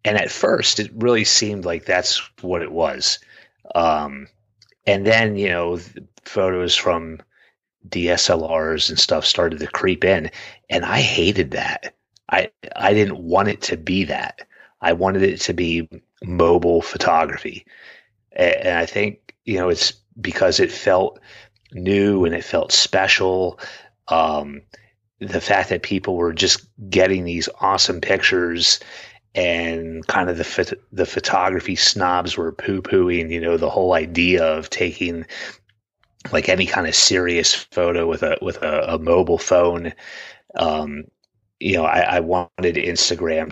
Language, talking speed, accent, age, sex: English, 150 wpm, American, 30-49, male